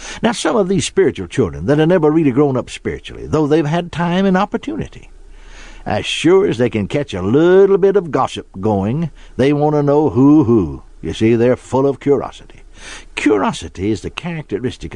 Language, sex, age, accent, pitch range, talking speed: English, male, 60-79, American, 125-190 Hz, 190 wpm